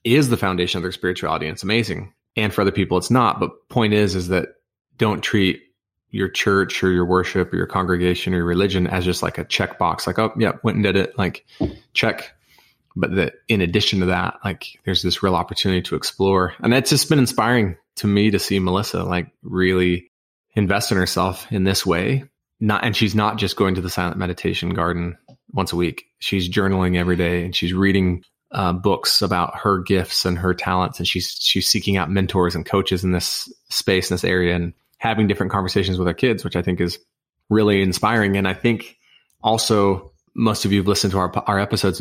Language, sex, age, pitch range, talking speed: English, male, 20-39, 90-105 Hz, 205 wpm